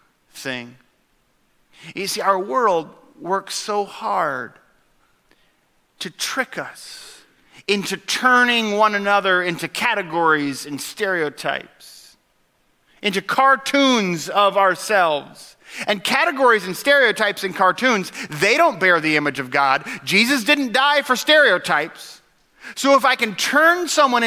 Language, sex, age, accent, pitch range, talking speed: English, male, 40-59, American, 190-270 Hz, 115 wpm